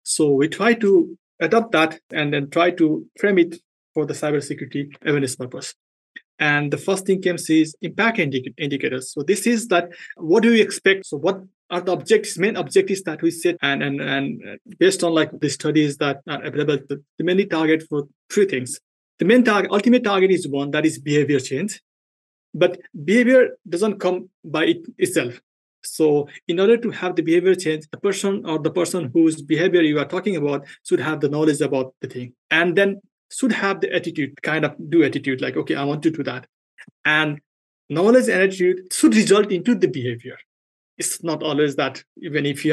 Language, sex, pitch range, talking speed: English, male, 150-195 Hz, 195 wpm